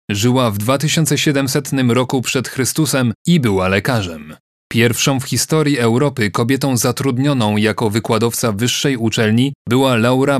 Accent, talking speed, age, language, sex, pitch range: native, 120 wpm, 30-49, Polish, male, 115-145 Hz